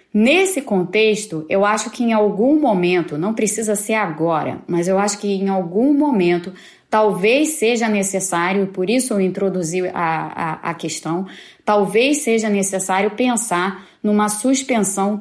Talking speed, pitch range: 140 wpm, 185-225 Hz